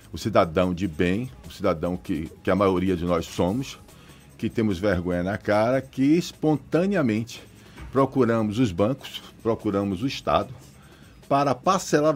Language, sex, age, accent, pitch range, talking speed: Portuguese, male, 40-59, Brazilian, 105-145 Hz, 140 wpm